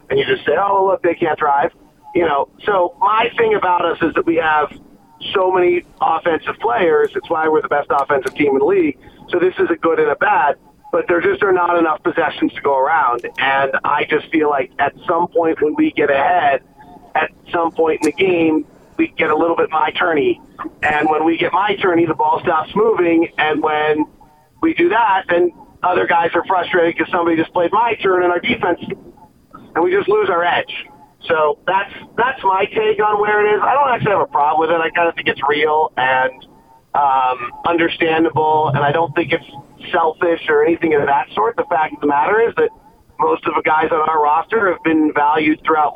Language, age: English, 40-59